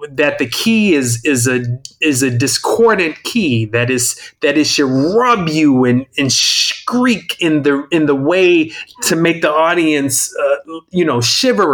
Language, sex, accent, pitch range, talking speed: English, male, American, 125-180 Hz, 170 wpm